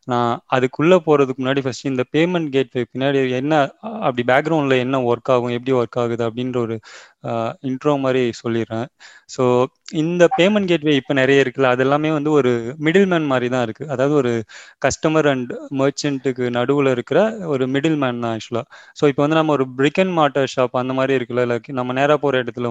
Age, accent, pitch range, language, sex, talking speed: 20-39, native, 125-150 Hz, Tamil, male, 175 wpm